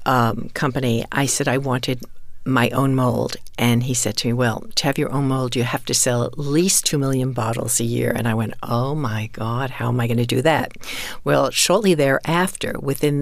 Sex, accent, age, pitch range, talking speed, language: female, American, 60-79, 120-140 Hz, 220 wpm, English